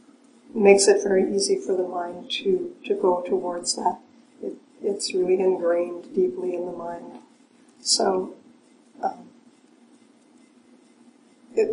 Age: 50-69